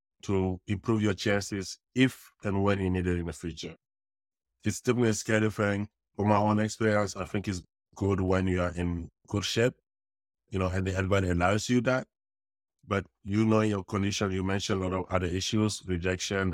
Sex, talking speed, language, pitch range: male, 190 wpm, English, 90-105 Hz